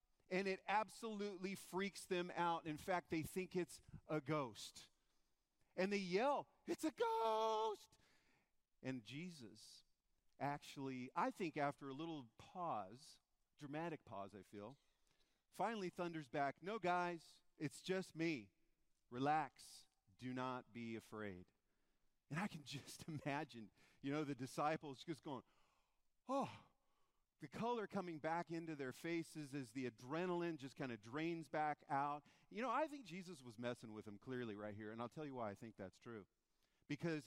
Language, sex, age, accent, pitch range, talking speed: English, male, 40-59, American, 130-180 Hz, 155 wpm